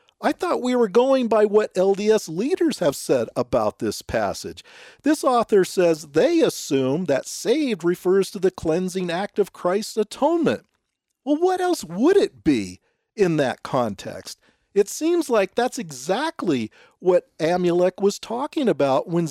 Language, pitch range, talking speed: English, 175-245 Hz, 150 wpm